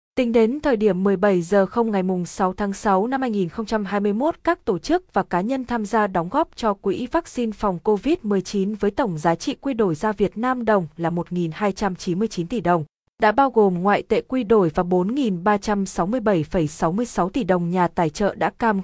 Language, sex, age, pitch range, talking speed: Vietnamese, female, 20-39, 185-235 Hz, 185 wpm